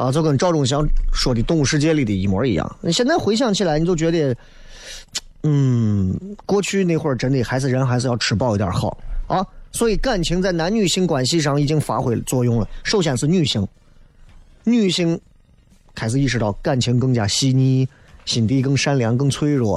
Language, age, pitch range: Chinese, 30-49, 130-180 Hz